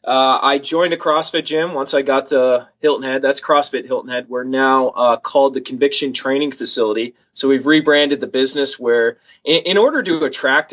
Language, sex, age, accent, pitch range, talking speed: English, male, 20-39, American, 125-145 Hz, 195 wpm